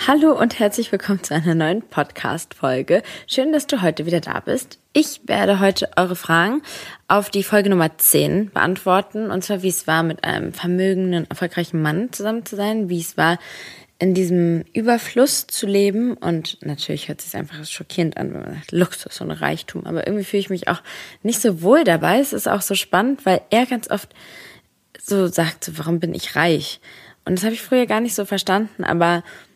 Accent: German